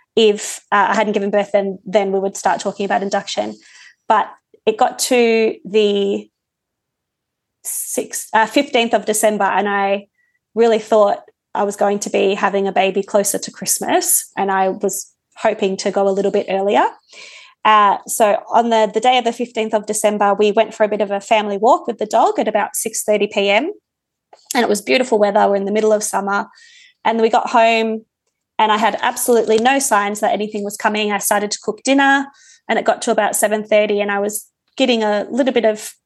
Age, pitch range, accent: 20-39, 200-230 Hz, Australian